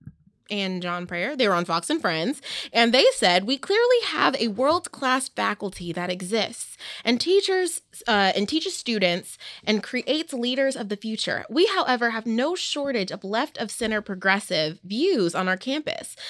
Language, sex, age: English, female, 20-39